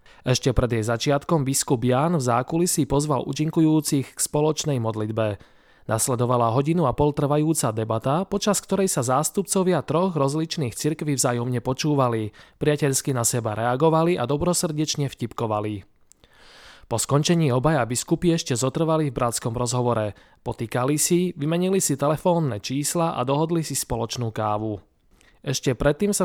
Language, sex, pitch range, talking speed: Slovak, male, 120-160 Hz, 135 wpm